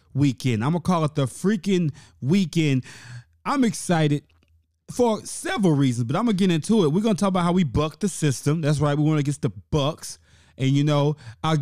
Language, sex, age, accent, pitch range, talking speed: English, male, 20-39, American, 135-185 Hz, 205 wpm